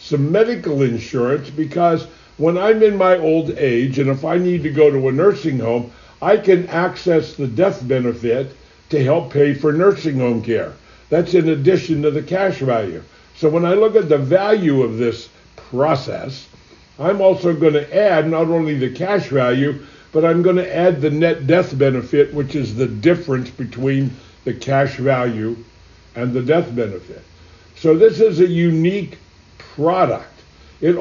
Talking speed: 170 wpm